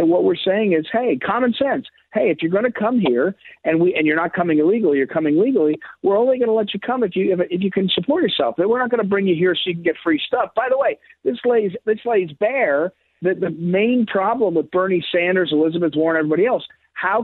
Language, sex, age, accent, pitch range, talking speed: English, male, 50-69, American, 150-215 Hz, 240 wpm